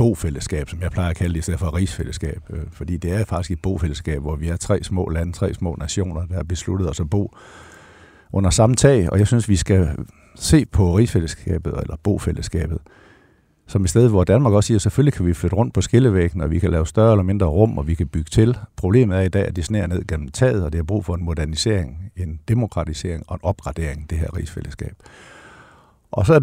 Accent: native